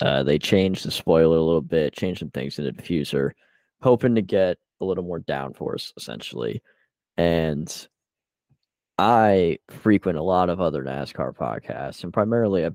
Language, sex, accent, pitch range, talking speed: English, male, American, 80-100 Hz, 160 wpm